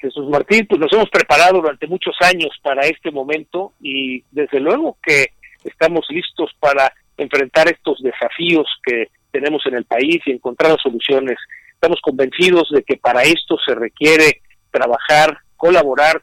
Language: Spanish